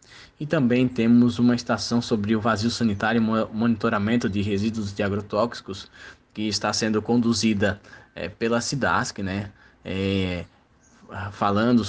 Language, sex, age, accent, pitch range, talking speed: Portuguese, male, 20-39, Brazilian, 100-120 Hz, 115 wpm